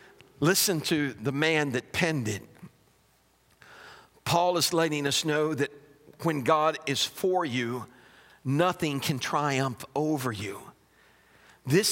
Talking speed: 120 wpm